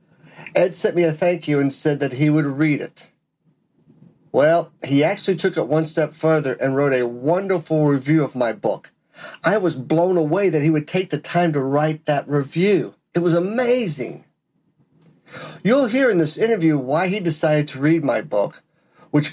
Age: 50-69